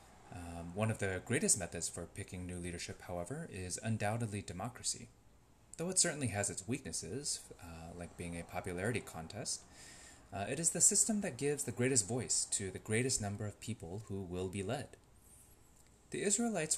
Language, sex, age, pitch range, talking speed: English, male, 30-49, 95-120 Hz, 170 wpm